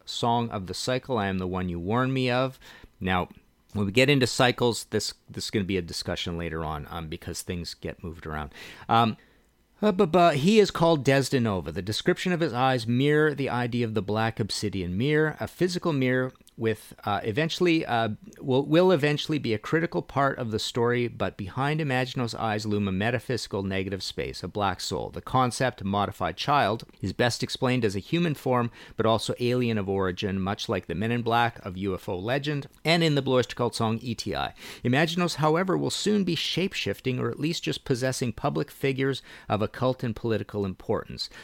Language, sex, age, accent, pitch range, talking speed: English, male, 40-59, American, 105-145 Hz, 195 wpm